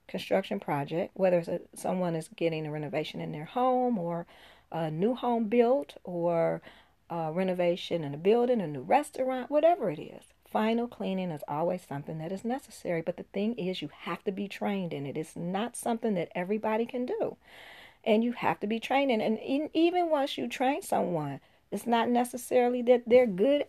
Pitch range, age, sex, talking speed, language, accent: 170-250 Hz, 40-59, female, 195 wpm, English, American